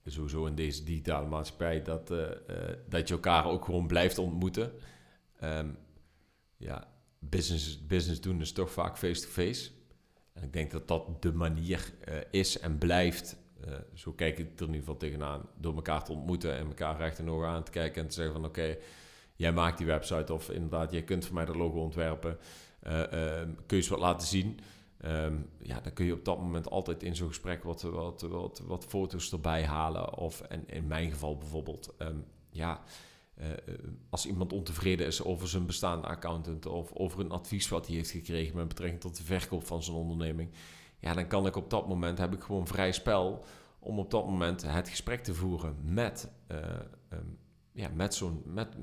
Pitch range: 80-90 Hz